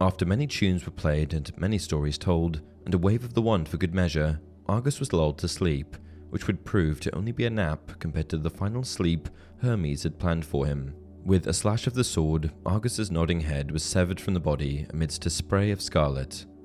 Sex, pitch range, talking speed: male, 75-95 Hz, 215 wpm